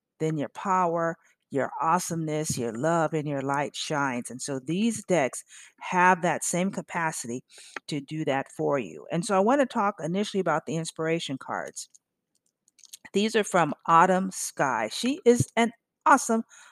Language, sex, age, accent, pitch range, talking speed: English, female, 50-69, American, 145-185 Hz, 160 wpm